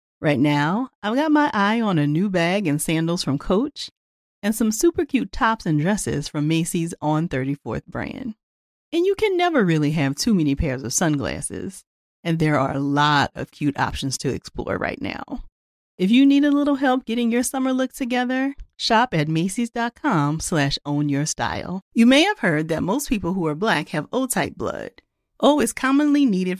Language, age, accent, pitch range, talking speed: English, 40-59, American, 155-250 Hz, 185 wpm